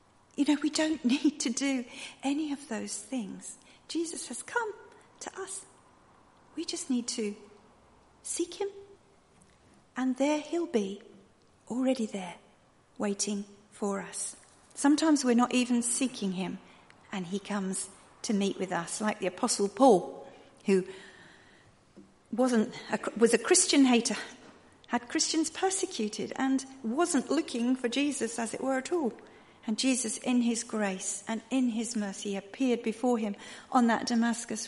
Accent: British